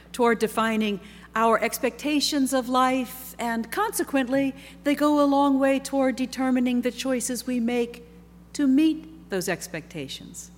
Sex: female